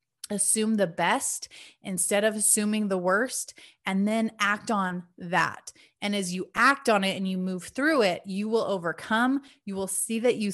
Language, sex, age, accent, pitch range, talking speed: English, female, 20-39, American, 200-245 Hz, 180 wpm